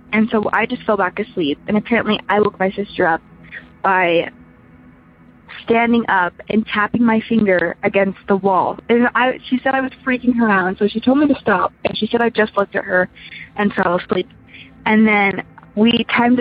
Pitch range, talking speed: 190-230 Hz, 200 wpm